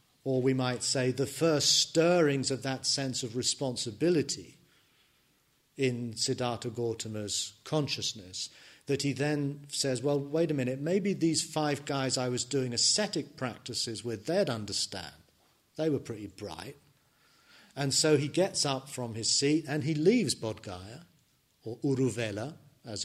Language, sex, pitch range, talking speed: English, male, 115-145 Hz, 145 wpm